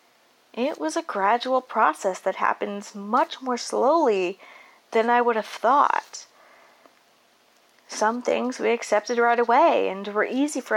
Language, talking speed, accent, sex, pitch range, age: English, 140 wpm, American, female, 185-220 Hz, 30-49